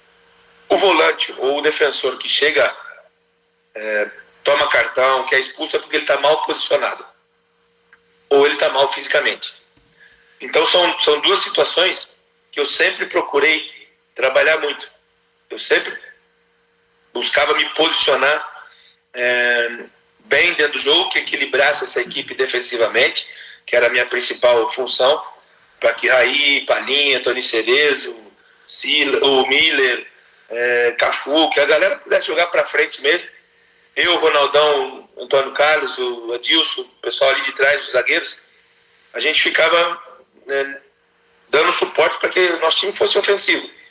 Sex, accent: male, Brazilian